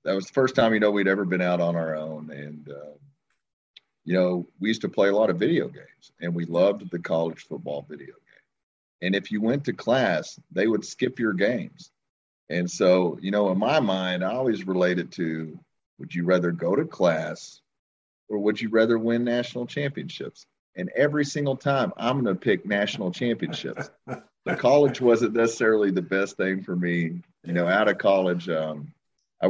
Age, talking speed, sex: 40-59, 195 wpm, male